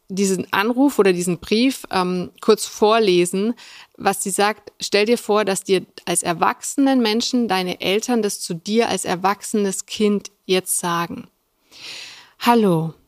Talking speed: 140 wpm